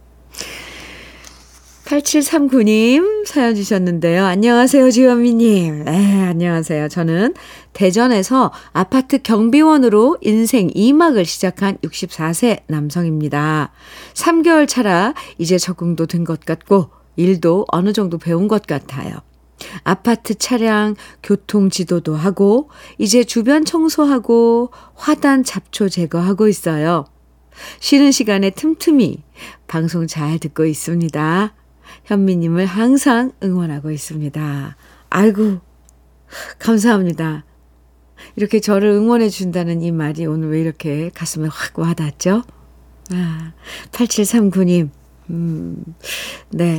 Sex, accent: female, native